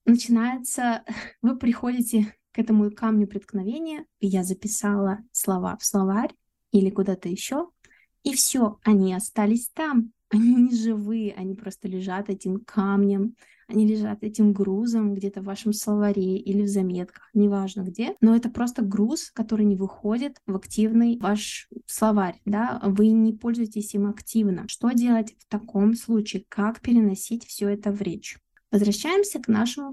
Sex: female